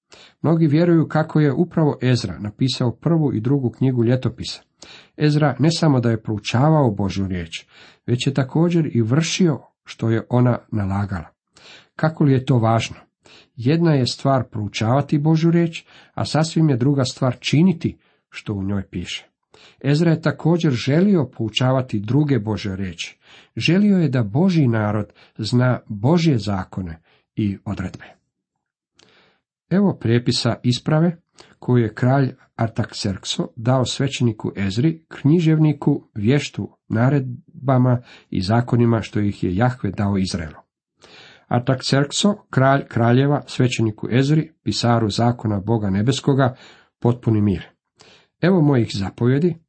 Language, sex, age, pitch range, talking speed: Croatian, male, 50-69, 110-155 Hz, 125 wpm